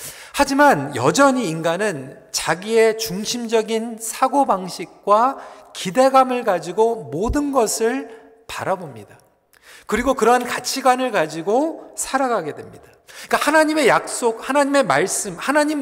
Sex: male